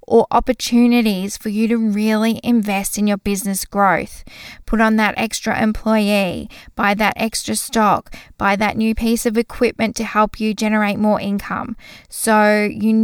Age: 10-29